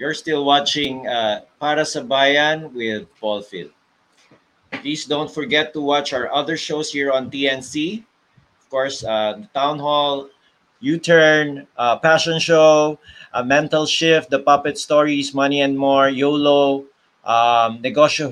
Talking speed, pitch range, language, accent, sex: 140 wpm, 140-155 Hz, English, Filipino, male